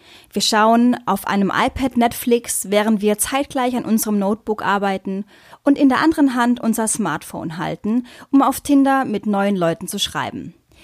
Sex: female